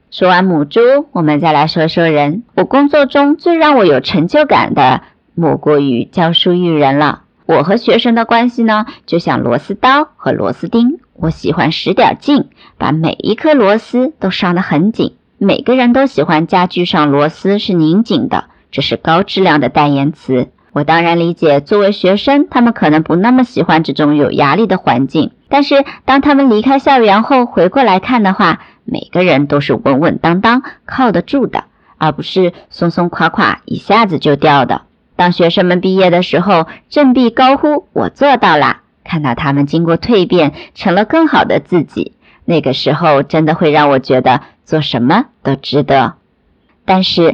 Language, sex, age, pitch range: Chinese, male, 50-69, 155-240 Hz